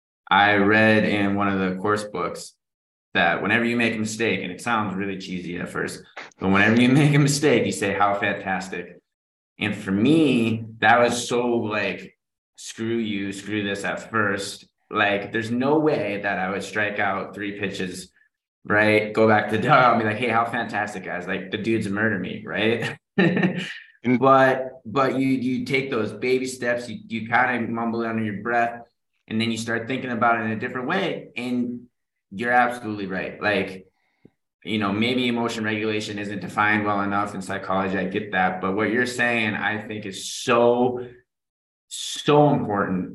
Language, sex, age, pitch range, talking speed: English, male, 20-39, 100-120 Hz, 180 wpm